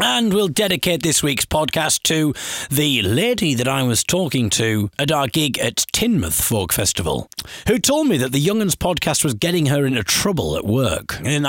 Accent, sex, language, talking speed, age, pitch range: British, male, English, 190 wpm, 40-59, 105-145 Hz